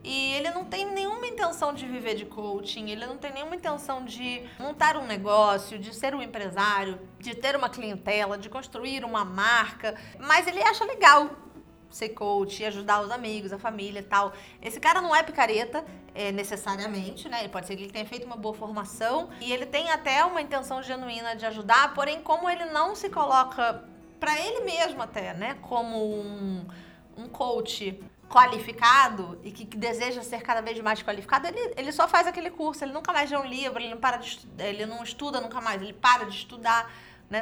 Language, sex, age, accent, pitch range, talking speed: Portuguese, female, 20-39, Brazilian, 210-275 Hz, 195 wpm